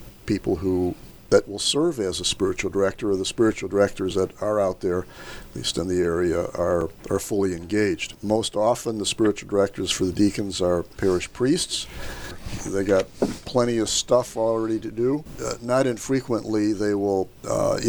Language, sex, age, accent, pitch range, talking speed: English, male, 50-69, American, 95-120 Hz, 170 wpm